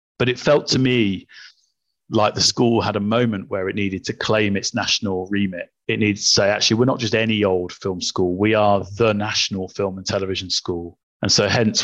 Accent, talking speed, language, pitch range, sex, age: British, 215 wpm, English, 95-110 Hz, male, 30-49